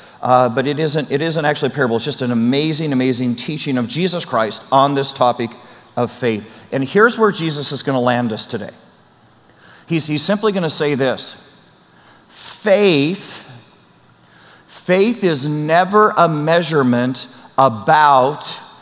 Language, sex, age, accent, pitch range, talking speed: English, male, 40-59, American, 125-160 Hz, 150 wpm